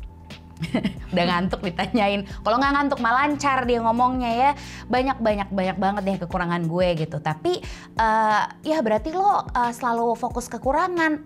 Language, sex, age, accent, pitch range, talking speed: Indonesian, female, 20-39, native, 165-230 Hz, 145 wpm